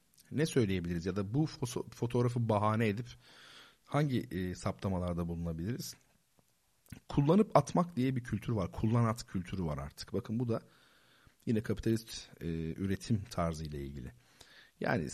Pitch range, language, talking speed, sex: 90-130 Hz, Turkish, 130 wpm, male